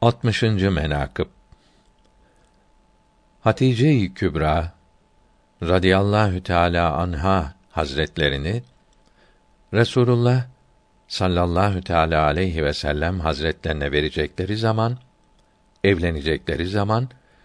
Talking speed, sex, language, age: 65 wpm, male, Turkish, 60-79